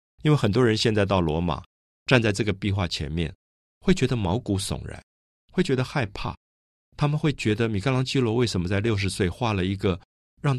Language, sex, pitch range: Chinese, male, 85-130 Hz